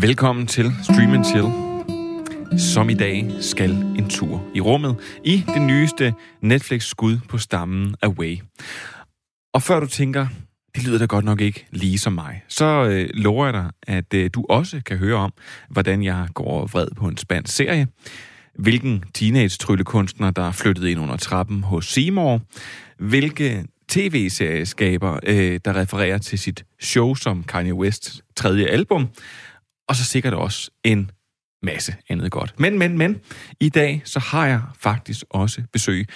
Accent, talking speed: native, 160 wpm